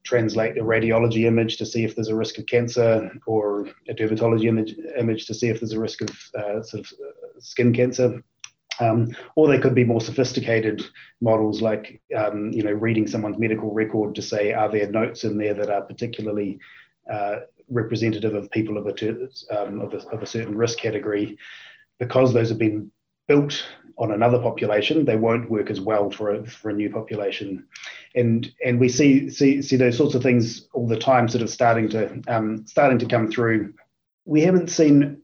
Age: 20-39